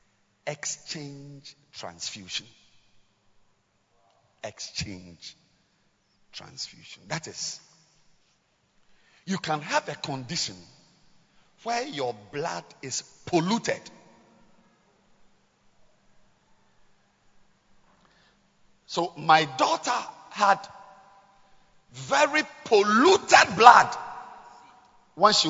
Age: 50-69